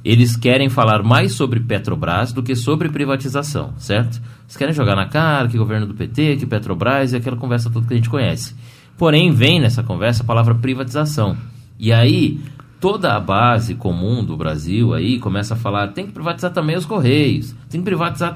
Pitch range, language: 115-150 Hz, Portuguese